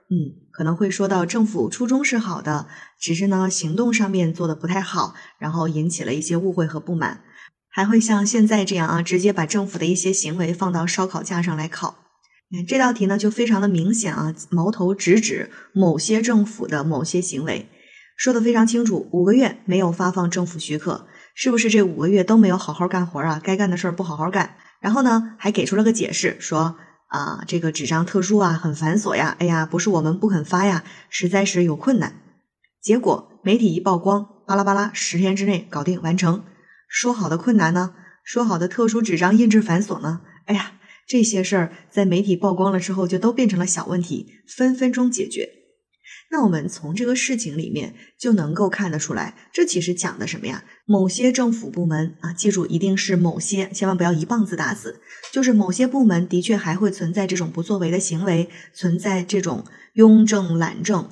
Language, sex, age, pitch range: Chinese, female, 20-39, 170-215 Hz